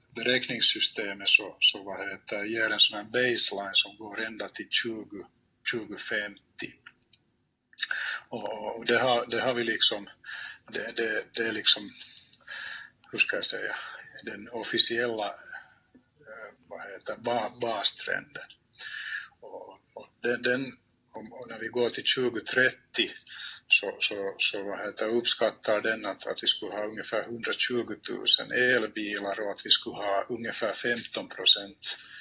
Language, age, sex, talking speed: Swedish, 60-79, male, 125 wpm